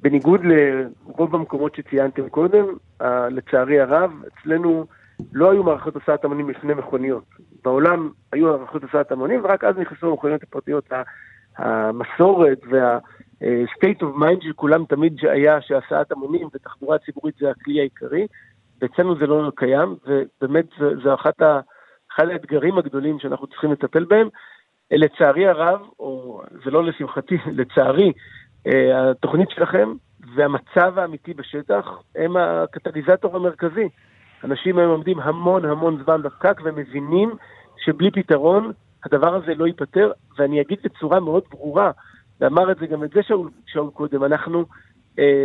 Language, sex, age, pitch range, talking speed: Hebrew, male, 50-69, 140-180 Hz, 130 wpm